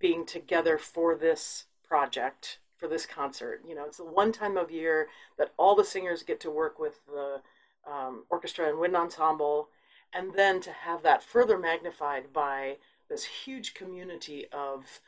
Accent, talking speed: American, 165 wpm